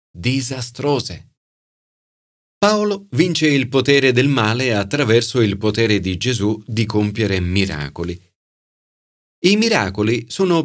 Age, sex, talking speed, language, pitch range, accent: 30-49, male, 100 wpm, Italian, 100-145 Hz, native